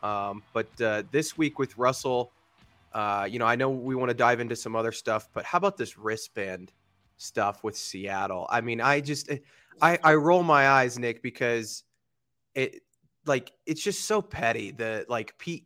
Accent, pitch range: American, 110-130 Hz